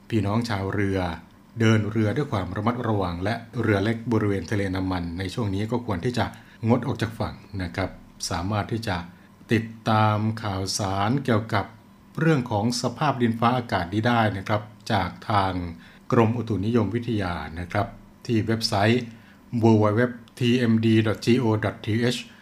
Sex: male